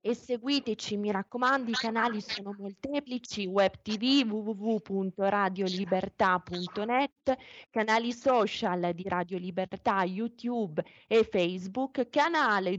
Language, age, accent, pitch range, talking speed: Italian, 20-39, native, 185-230 Hz, 95 wpm